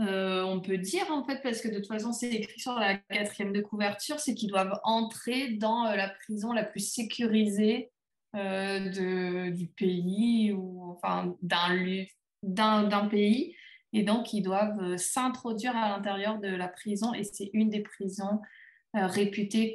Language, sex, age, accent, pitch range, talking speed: French, female, 20-39, French, 185-220 Hz, 165 wpm